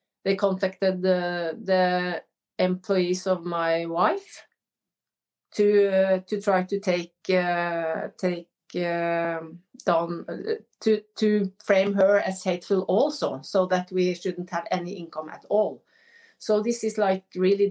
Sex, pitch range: female, 180-215 Hz